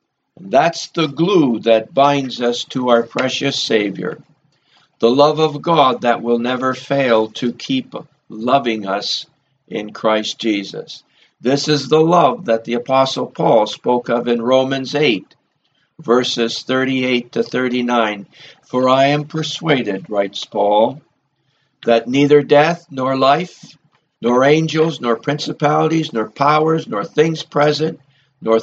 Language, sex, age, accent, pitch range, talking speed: English, male, 60-79, American, 115-155 Hz, 130 wpm